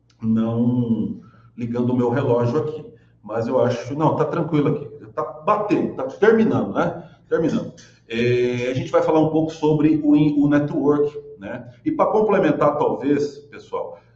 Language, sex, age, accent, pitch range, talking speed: Portuguese, male, 40-59, Brazilian, 150-220 Hz, 155 wpm